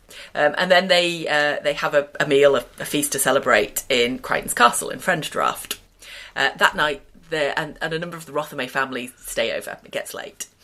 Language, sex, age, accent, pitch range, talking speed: English, female, 30-49, British, 140-185 Hz, 210 wpm